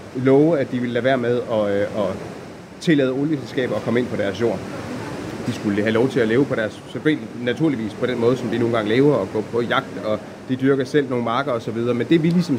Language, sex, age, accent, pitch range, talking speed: Danish, male, 30-49, native, 120-145 Hz, 245 wpm